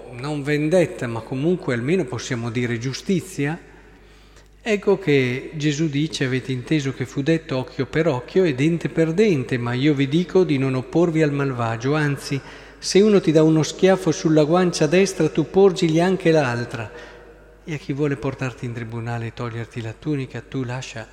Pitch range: 120-150 Hz